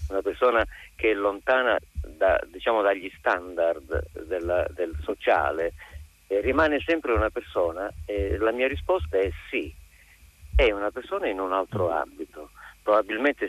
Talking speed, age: 140 wpm, 50-69